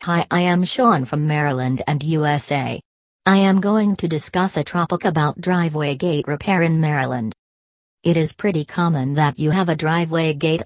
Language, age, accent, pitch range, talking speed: English, 40-59, American, 150-175 Hz, 175 wpm